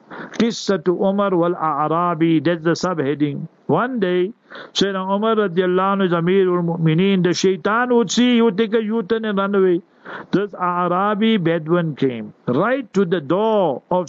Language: English